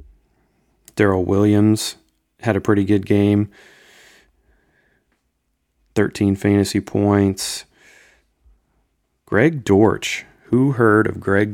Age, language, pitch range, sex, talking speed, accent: 30-49, English, 95-105 Hz, male, 85 wpm, American